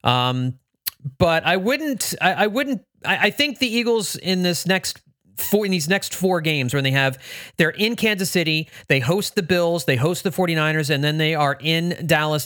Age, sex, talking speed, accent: 30-49, male, 200 wpm, American